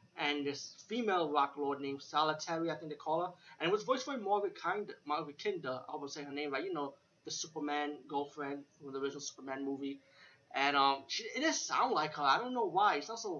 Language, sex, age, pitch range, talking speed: English, male, 20-39, 140-180 Hz, 235 wpm